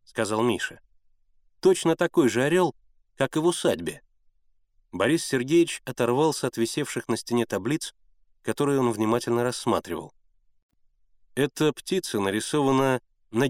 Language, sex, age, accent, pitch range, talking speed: Russian, male, 30-49, native, 115-155 Hz, 115 wpm